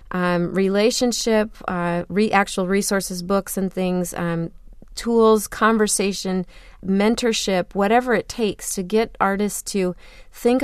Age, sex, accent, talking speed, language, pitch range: 30-49, female, American, 120 wpm, English, 175-205 Hz